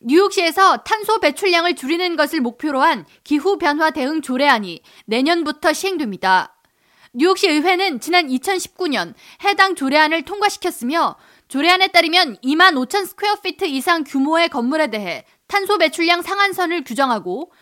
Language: Korean